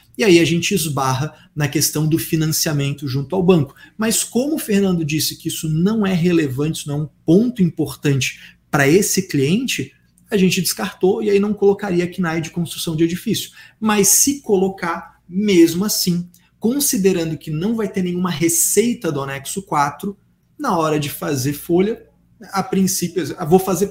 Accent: Brazilian